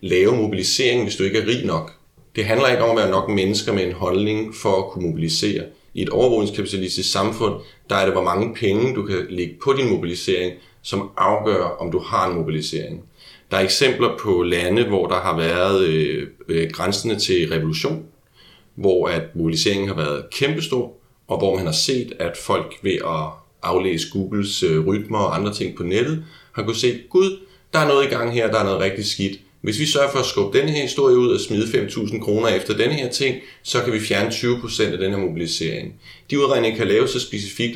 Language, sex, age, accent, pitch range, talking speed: Danish, male, 30-49, native, 90-115 Hz, 205 wpm